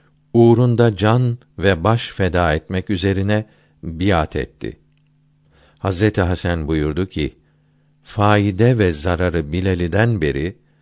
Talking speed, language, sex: 100 wpm, Turkish, male